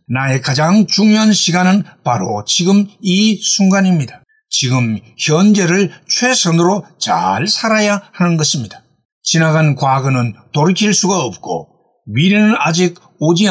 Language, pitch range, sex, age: Korean, 145-205 Hz, male, 60-79